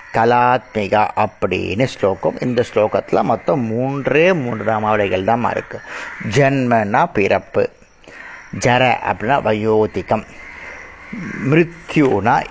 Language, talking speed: Tamil, 80 wpm